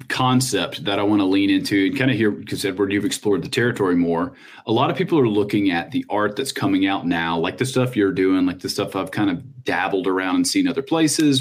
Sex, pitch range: male, 95-130 Hz